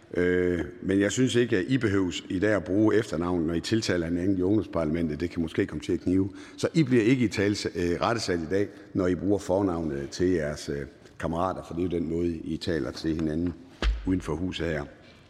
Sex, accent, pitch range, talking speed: male, native, 85-110 Hz, 210 wpm